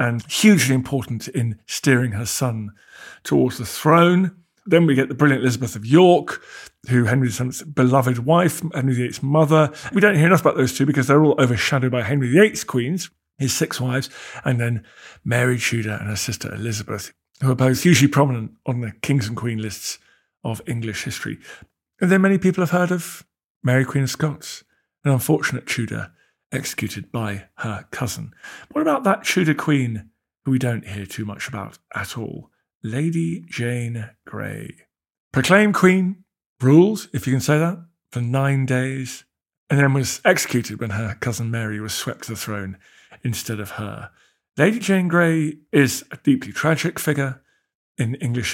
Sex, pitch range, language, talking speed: male, 115-155 Hz, English, 170 wpm